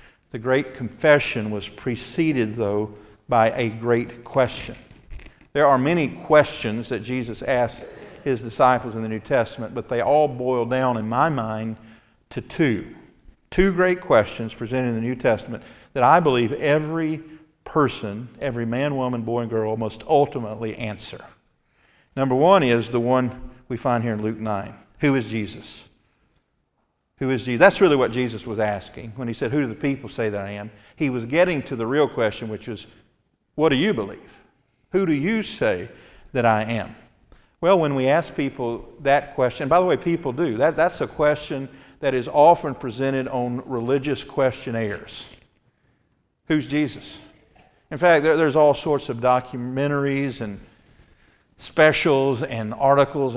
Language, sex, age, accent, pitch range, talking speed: English, male, 50-69, American, 115-140 Hz, 160 wpm